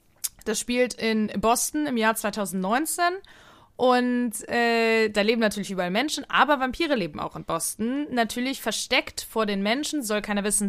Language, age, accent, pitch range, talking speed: German, 20-39, German, 205-250 Hz, 155 wpm